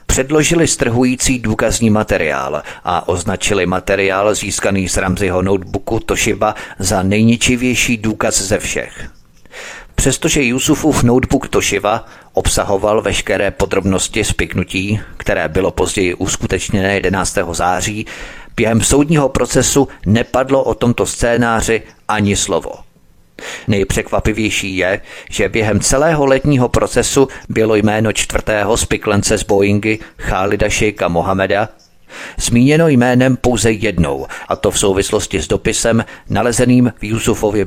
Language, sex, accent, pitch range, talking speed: Czech, male, native, 95-120 Hz, 110 wpm